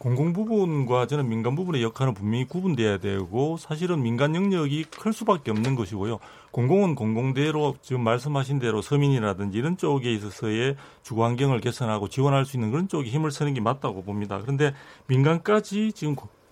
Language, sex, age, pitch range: Korean, male, 40-59, 115-155 Hz